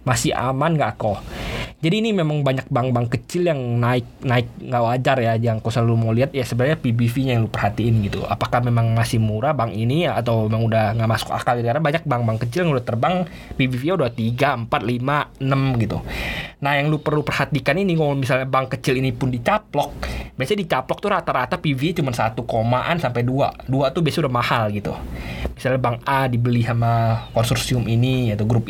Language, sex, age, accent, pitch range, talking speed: Indonesian, male, 20-39, native, 115-145 Hz, 190 wpm